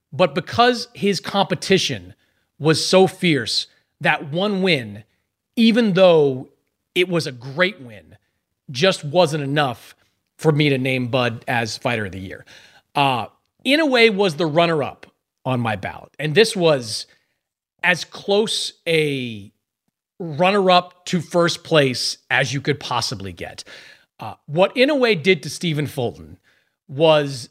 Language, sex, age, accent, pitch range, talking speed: English, male, 30-49, American, 125-185 Hz, 140 wpm